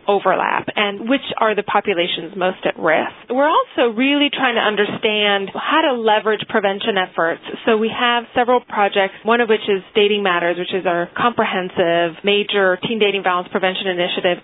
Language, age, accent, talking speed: English, 30-49, American, 170 wpm